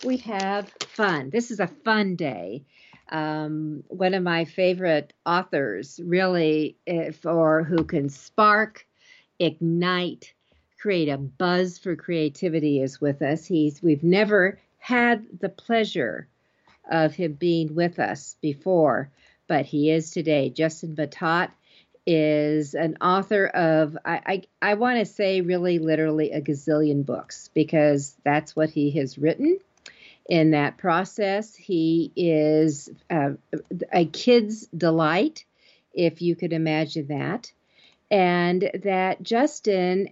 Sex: female